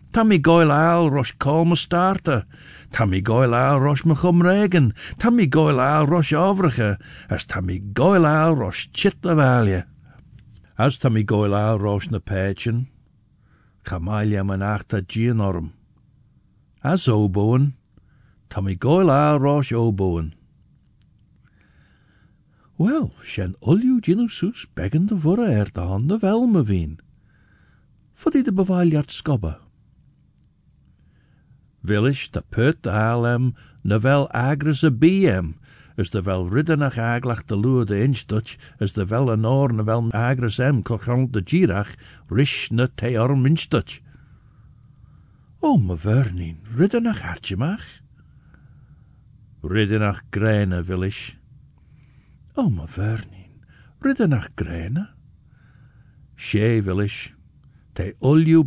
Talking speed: 100 wpm